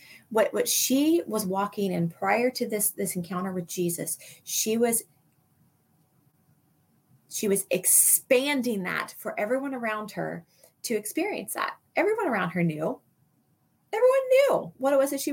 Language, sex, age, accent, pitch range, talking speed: English, female, 30-49, American, 205-290 Hz, 140 wpm